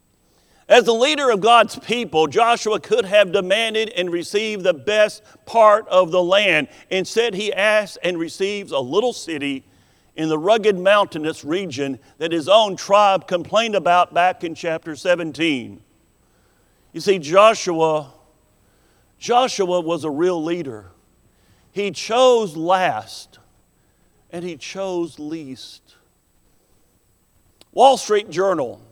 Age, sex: 50-69, male